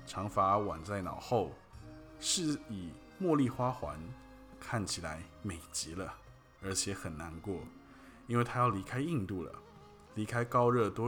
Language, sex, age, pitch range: Chinese, male, 20-39, 95-130 Hz